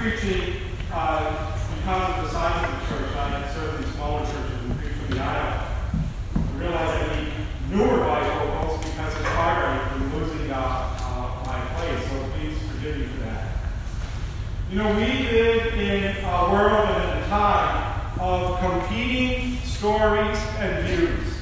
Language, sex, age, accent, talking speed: English, male, 40-59, American, 150 wpm